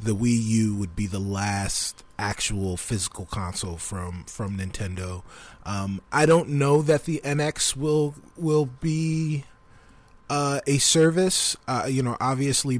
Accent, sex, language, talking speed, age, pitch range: American, male, English, 140 wpm, 20-39, 115-145 Hz